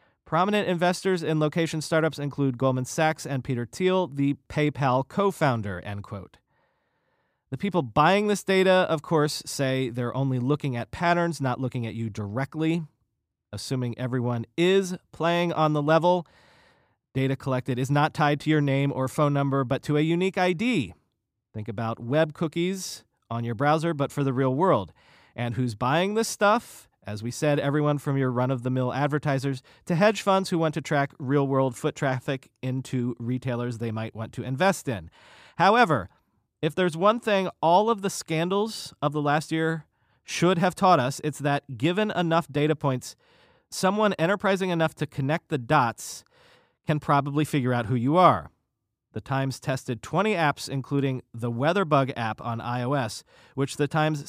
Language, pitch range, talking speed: English, 130-170 Hz, 165 wpm